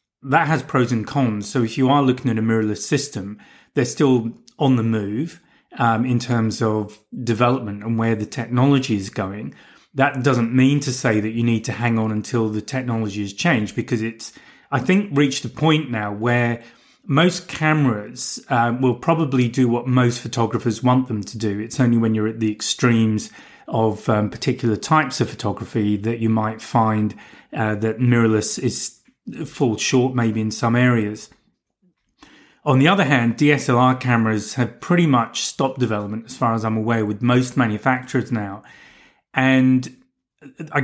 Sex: male